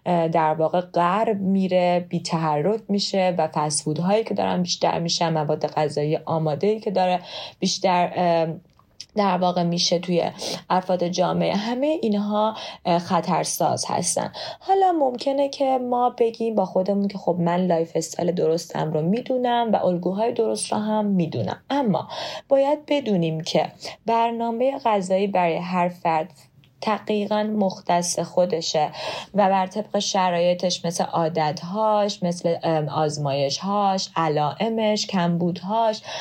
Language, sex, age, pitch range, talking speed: English, female, 30-49, 170-215 Hz, 120 wpm